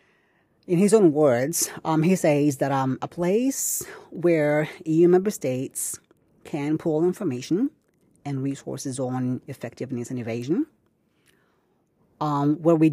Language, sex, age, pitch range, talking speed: English, female, 30-49, 130-160 Hz, 125 wpm